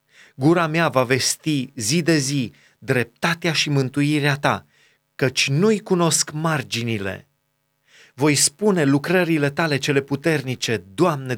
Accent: native